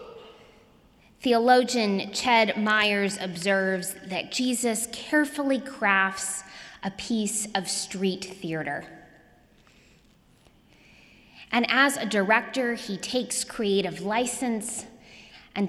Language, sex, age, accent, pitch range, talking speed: English, female, 20-39, American, 185-235 Hz, 85 wpm